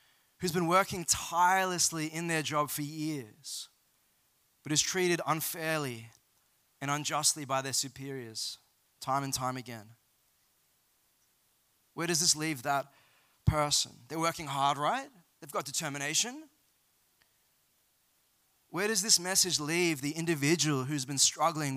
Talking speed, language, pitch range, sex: 125 wpm, English, 135-180 Hz, male